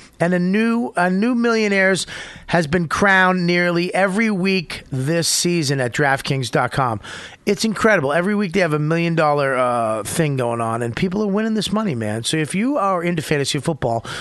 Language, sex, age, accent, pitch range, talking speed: English, male, 40-59, American, 135-190 Hz, 175 wpm